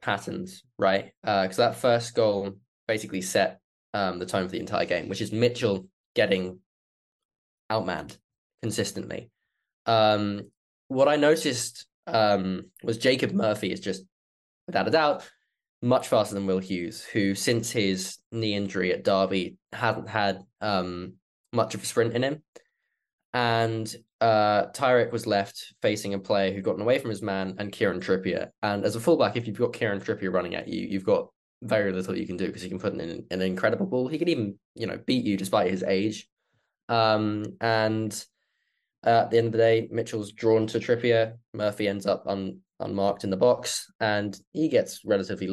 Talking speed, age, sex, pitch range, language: 180 wpm, 10-29, male, 95-115 Hz, English